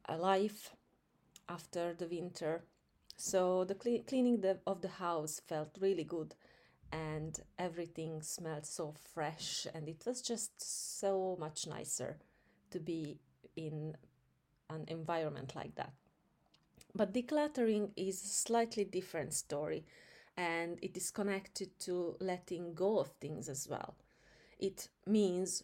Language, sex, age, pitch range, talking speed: English, female, 30-49, 160-195 Hz, 120 wpm